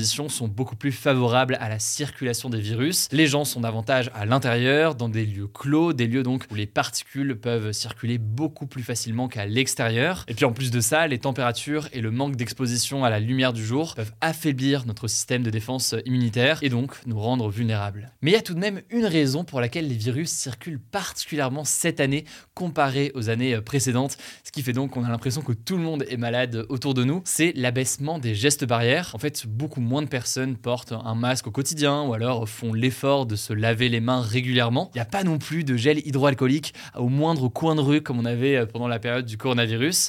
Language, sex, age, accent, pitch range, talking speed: French, male, 20-39, French, 120-145 Hz, 220 wpm